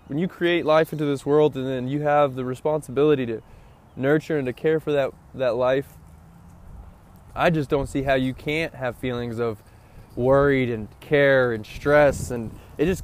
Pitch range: 120-150 Hz